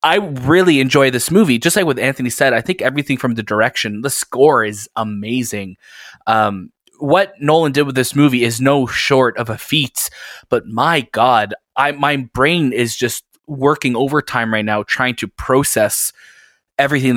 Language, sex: English, male